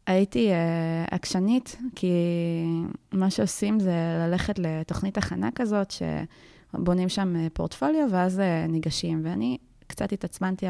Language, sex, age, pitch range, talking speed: Hebrew, female, 20-39, 165-200 Hz, 100 wpm